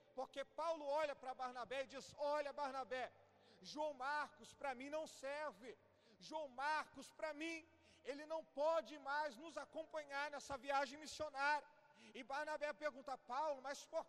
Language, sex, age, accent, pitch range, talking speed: Portuguese, male, 40-59, Brazilian, 275-300 Hz, 145 wpm